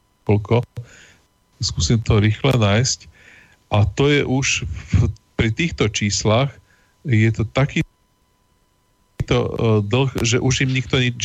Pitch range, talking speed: 105-125 Hz, 125 wpm